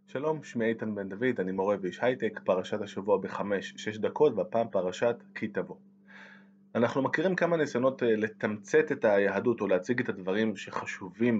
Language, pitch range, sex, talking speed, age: Hebrew, 105-160 Hz, male, 155 wpm, 20-39